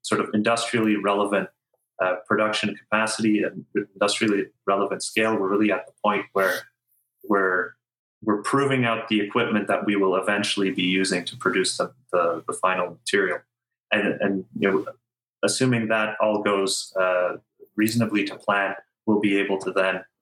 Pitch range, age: 100-120 Hz, 30-49